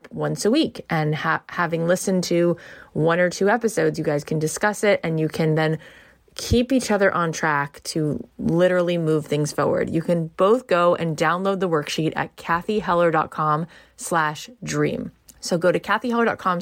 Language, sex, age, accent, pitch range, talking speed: English, female, 20-39, American, 155-195 Hz, 165 wpm